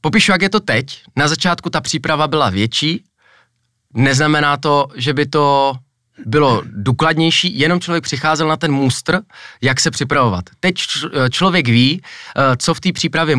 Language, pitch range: Czech, 135-165 Hz